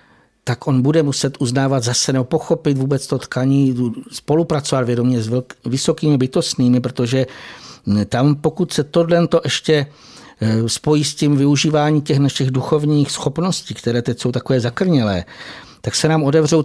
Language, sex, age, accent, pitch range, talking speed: Czech, male, 60-79, native, 125-150 Hz, 140 wpm